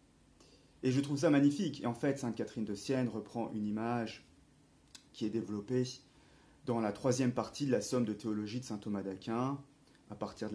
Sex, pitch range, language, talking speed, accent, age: male, 105-135 Hz, French, 195 wpm, French, 30-49